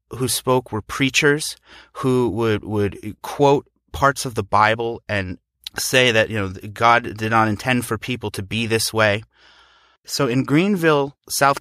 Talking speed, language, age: 160 wpm, English, 30-49